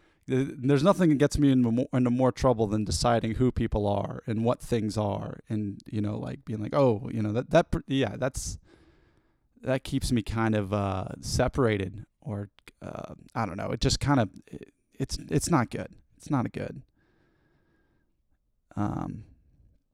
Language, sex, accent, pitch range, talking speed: English, male, American, 105-145 Hz, 170 wpm